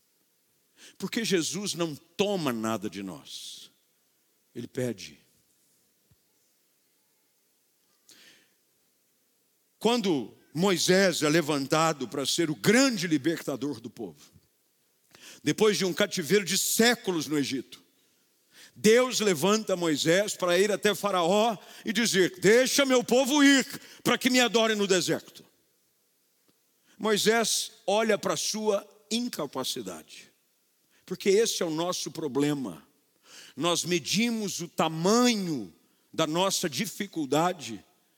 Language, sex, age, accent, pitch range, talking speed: Portuguese, male, 50-69, Brazilian, 170-220 Hz, 100 wpm